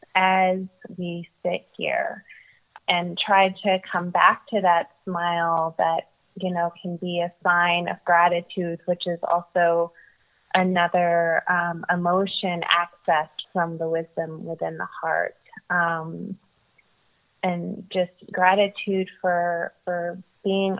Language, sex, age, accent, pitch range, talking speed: English, female, 20-39, American, 175-190 Hz, 120 wpm